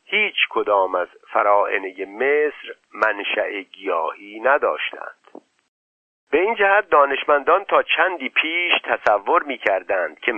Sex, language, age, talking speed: male, Persian, 50-69, 110 wpm